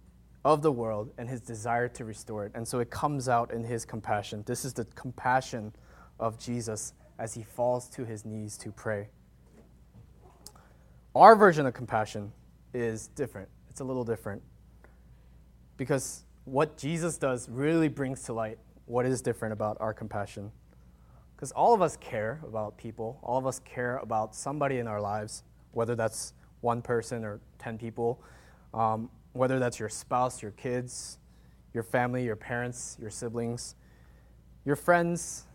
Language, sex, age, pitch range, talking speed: English, male, 20-39, 100-130 Hz, 155 wpm